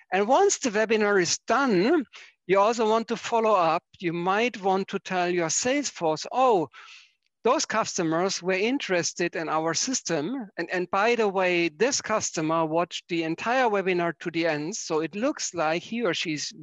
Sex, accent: male, German